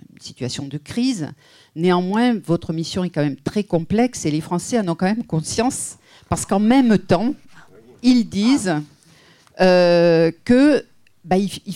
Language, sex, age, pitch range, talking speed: French, female, 50-69, 155-200 Hz, 145 wpm